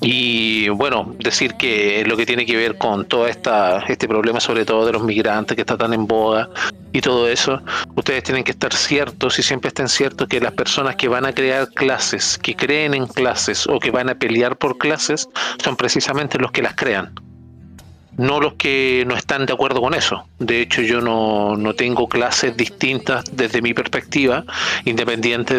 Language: Spanish